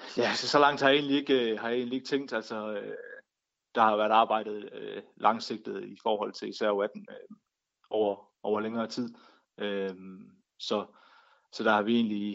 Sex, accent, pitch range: male, native, 105-120 Hz